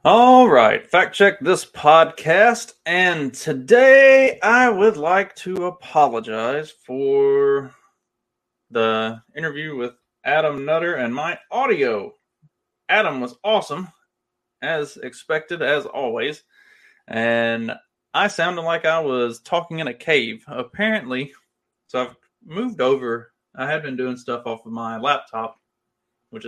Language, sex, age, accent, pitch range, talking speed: English, male, 30-49, American, 115-180 Hz, 120 wpm